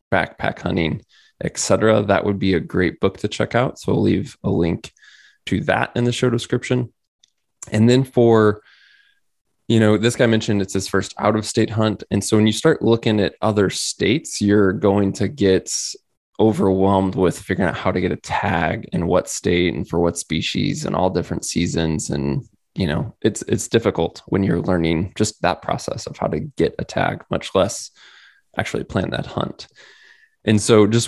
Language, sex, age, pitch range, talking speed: English, male, 20-39, 95-115 Hz, 190 wpm